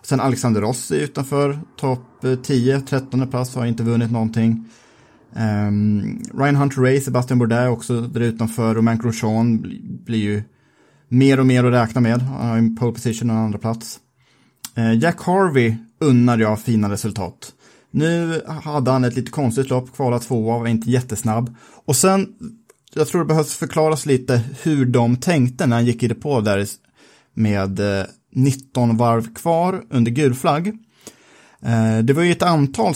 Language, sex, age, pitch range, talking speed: Swedish, male, 30-49, 115-140 Hz, 170 wpm